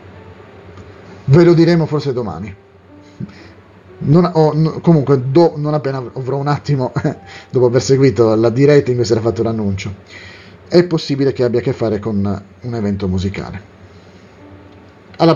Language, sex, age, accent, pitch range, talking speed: Italian, male, 40-59, native, 100-140 Hz, 150 wpm